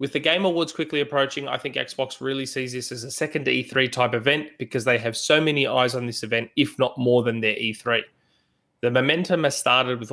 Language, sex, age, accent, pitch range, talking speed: English, male, 20-39, Australian, 115-140 Hz, 225 wpm